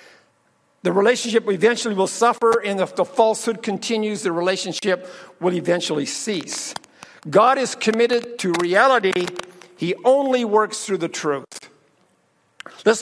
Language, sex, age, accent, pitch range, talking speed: English, male, 50-69, American, 210-270 Hz, 125 wpm